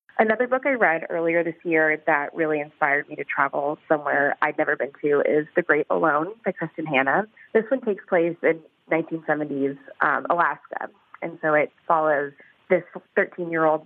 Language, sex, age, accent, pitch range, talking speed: English, female, 20-39, American, 150-175 Hz, 170 wpm